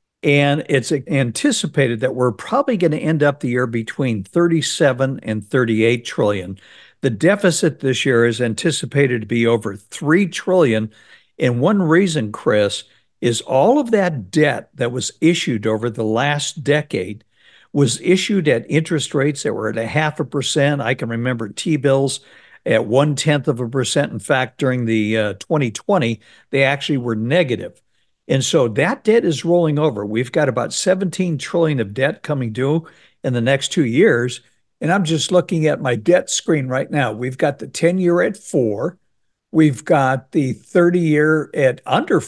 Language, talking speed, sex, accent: English, 170 wpm, male, American